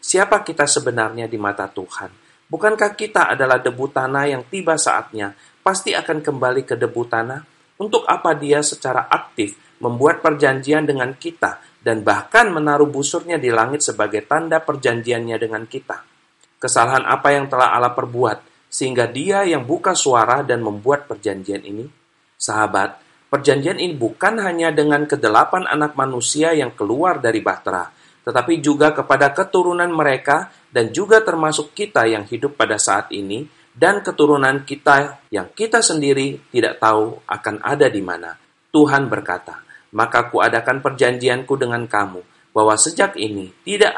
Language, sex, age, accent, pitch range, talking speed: Indonesian, male, 40-59, native, 120-160 Hz, 145 wpm